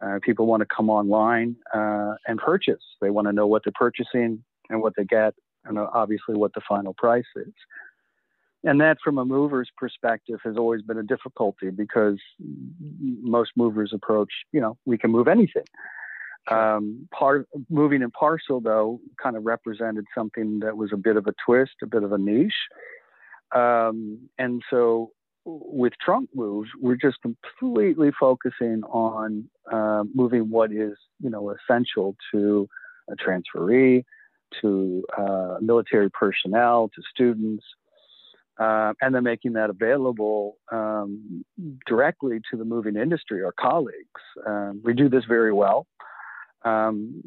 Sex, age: male, 40-59